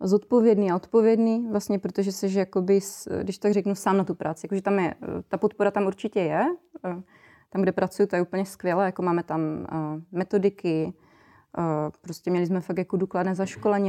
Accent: native